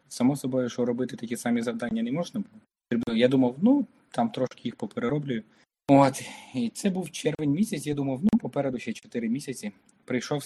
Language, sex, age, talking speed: Ukrainian, male, 20-39, 180 wpm